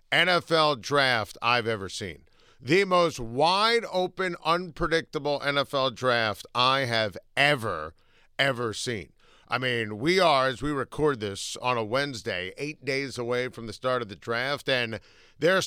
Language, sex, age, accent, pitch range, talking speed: English, male, 50-69, American, 120-160 Hz, 150 wpm